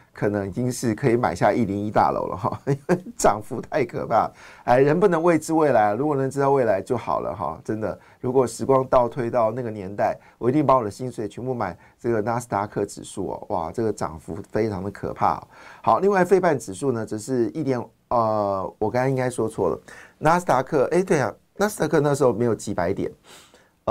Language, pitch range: Chinese, 105-140 Hz